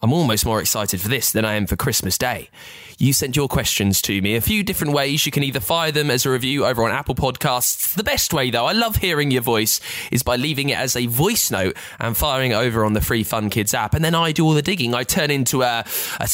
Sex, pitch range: male, 105-150 Hz